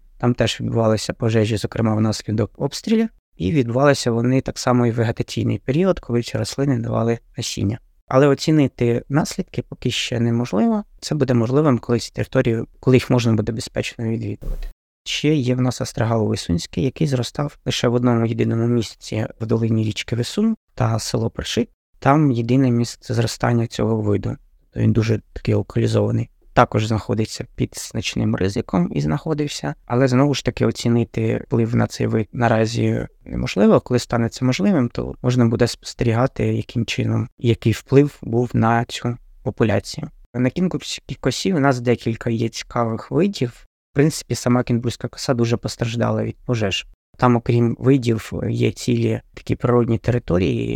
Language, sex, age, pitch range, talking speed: Ukrainian, male, 20-39, 115-130 Hz, 155 wpm